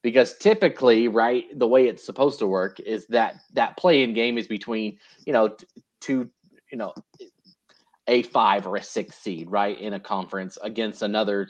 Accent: American